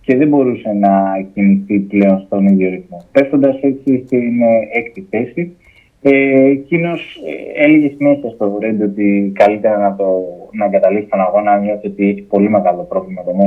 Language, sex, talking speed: Greek, male, 170 wpm